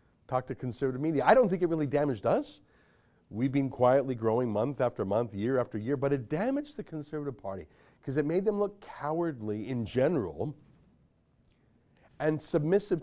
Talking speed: 170 wpm